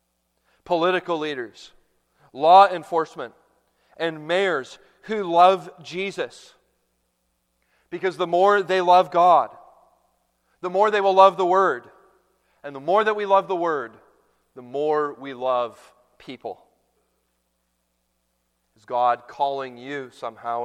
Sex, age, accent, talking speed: male, 40-59, American, 115 wpm